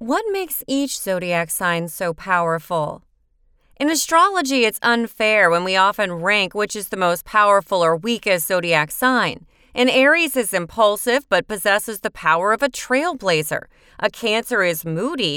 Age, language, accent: 30-49, English, American